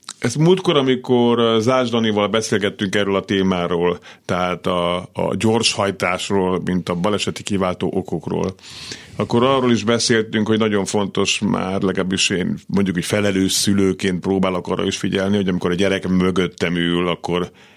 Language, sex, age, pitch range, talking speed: Hungarian, male, 50-69, 95-110 Hz, 140 wpm